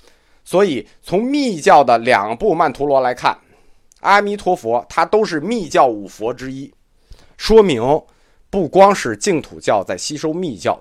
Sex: male